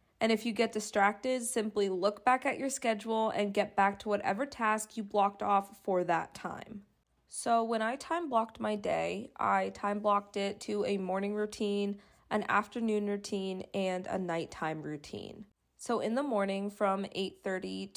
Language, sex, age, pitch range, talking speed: English, female, 20-39, 200-225 Hz, 170 wpm